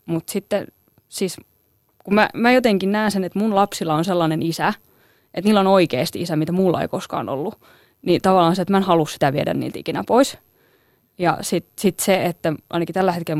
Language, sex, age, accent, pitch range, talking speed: Finnish, female, 20-39, native, 155-185 Hz, 200 wpm